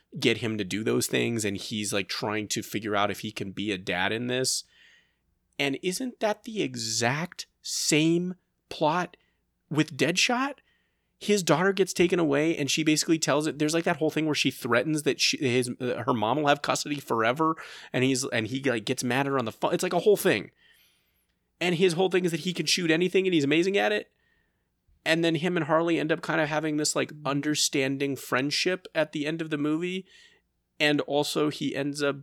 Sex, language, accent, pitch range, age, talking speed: male, English, American, 125-165 Hz, 30-49, 215 wpm